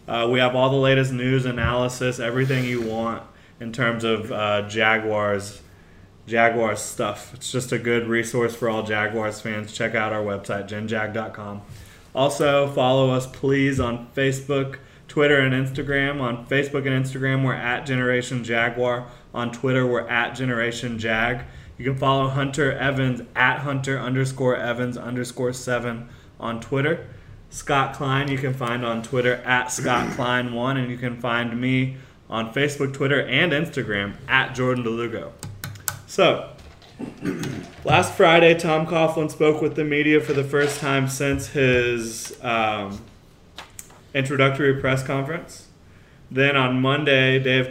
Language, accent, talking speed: English, American, 140 wpm